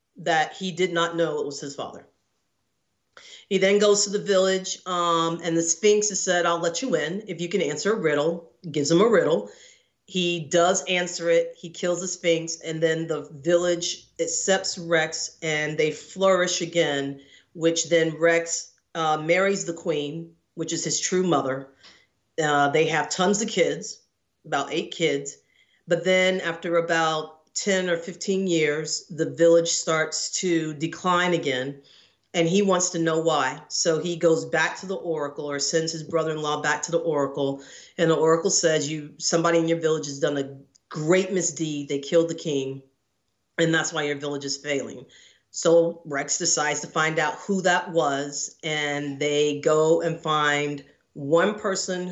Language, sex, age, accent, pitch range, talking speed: English, female, 40-59, American, 150-175 Hz, 175 wpm